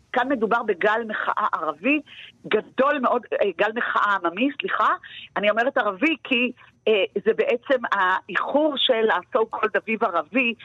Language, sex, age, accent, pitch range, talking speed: Hebrew, female, 50-69, native, 200-270 Hz, 130 wpm